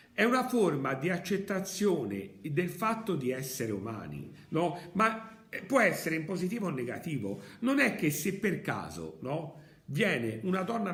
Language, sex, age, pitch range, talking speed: Italian, male, 50-69, 130-205 Hz, 160 wpm